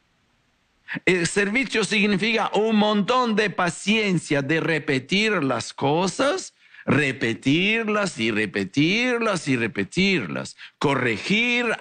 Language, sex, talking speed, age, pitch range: English, male, 80 wpm, 60-79, 140-215 Hz